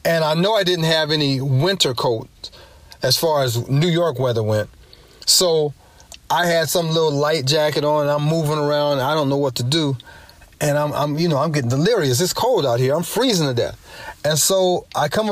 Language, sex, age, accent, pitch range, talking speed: English, male, 30-49, American, 140-180 Hz, 210 wpm